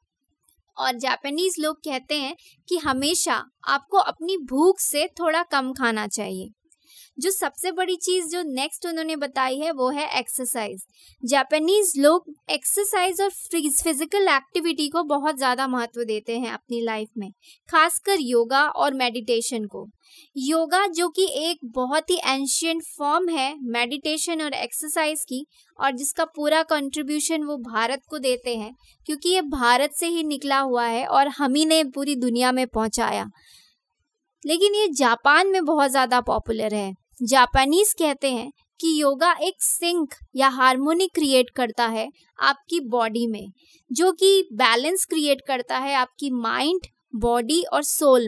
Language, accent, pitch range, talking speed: Hindi, native, 255-335 Hz, 150 wpm